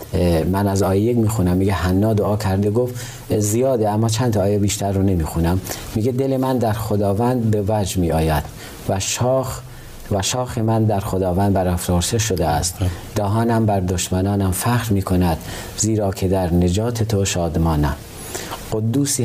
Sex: male